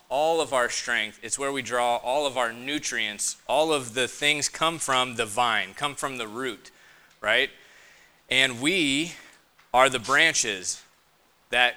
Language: English